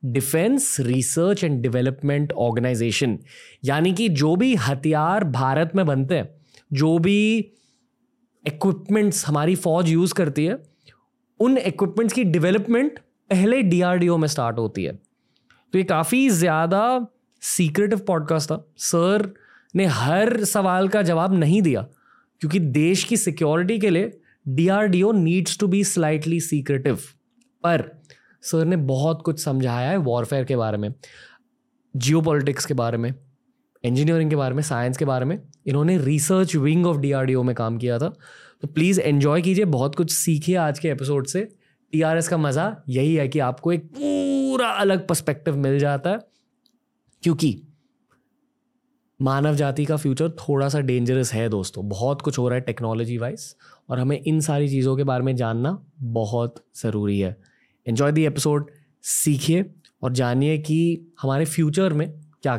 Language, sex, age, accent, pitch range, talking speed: Hindi, male, 20-39, native, 135-185 Hz, 150 wpm